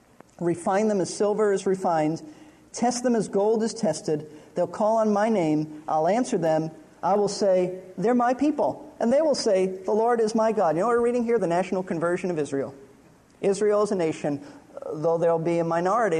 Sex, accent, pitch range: male, American, 155-205 Hz